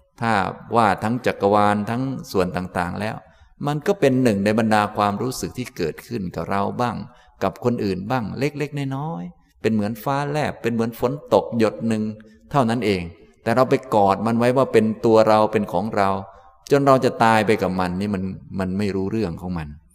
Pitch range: 100-130 Hz